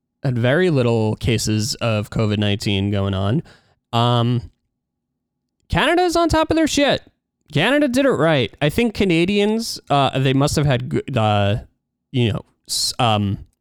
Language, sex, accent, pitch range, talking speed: English, male, American, 110-150 Hz, 140 wpm